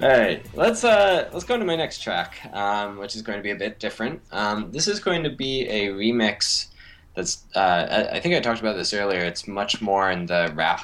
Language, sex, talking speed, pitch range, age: English, male, 240 wpm, 90-115 Hz, 10-29